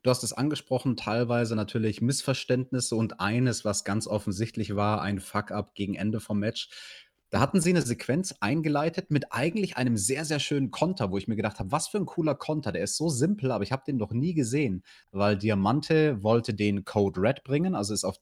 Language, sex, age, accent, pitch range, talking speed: German, male, 30-49, German, 105-135 Hz, 210 wpm